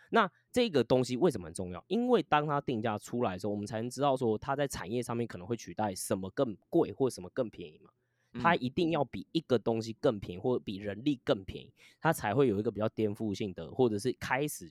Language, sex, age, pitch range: Chinese, male, 20-39, 100-140 Hz